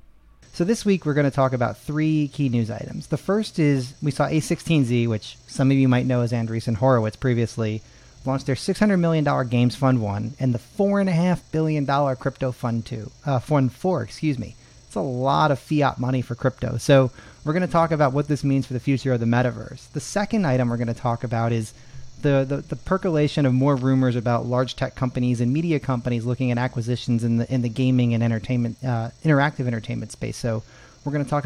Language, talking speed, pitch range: English, 225 wpm, 120-145 Hz